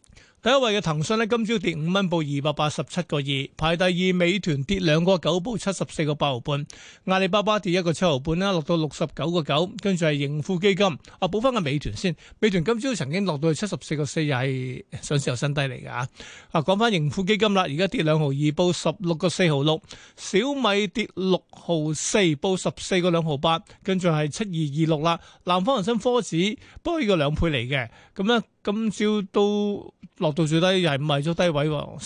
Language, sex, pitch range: Chinese, male, 155-195 Hz